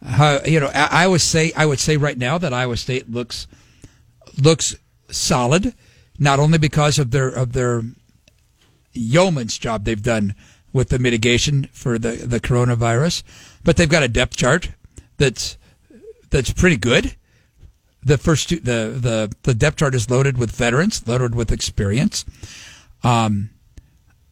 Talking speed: 145 wpm